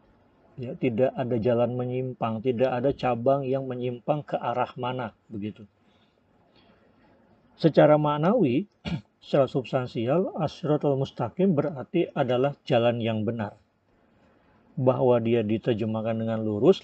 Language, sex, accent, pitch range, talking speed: Indonesian, male, native, 115-140 Hz, 105 wpm